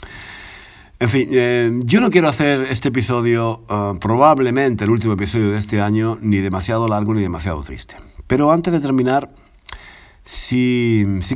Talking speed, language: 150 wpm, Spanish